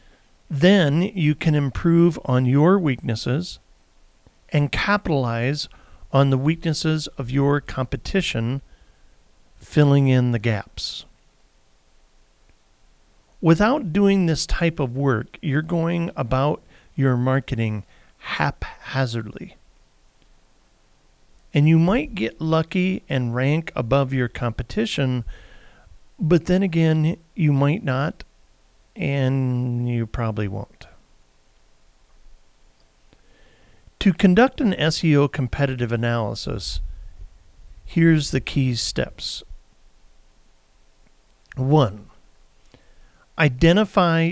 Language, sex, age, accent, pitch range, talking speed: English, male, 40-59, American, 110-160 Hz, 85 wpm